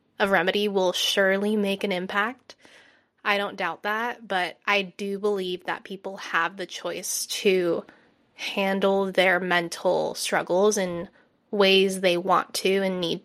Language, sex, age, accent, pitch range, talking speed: English, female, 20-39, American, 190-235 Hz, 145 wpm